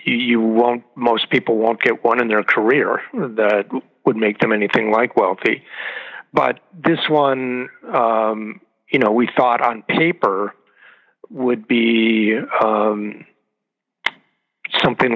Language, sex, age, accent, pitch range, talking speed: English, male, 50-69, American, 105-120 Hz, 125 wpm